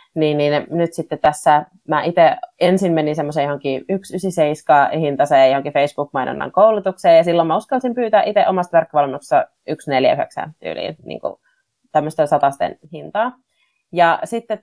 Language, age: Finnish, 30-49